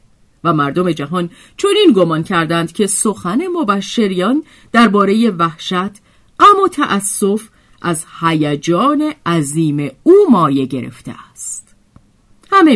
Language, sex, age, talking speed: Persian, female, 40-59, 105 wpm